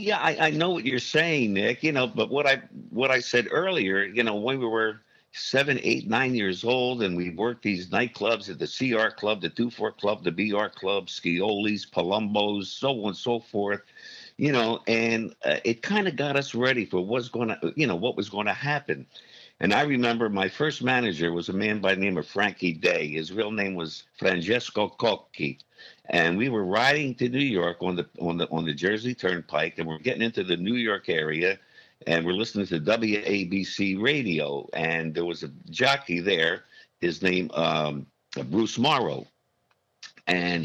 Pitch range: 95-130 Hz